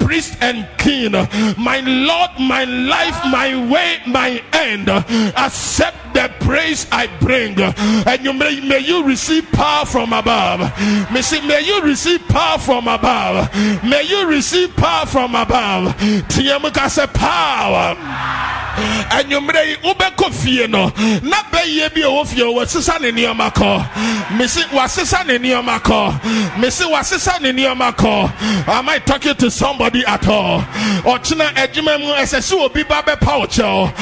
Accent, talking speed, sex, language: Nigerian, 135 wpm, male, English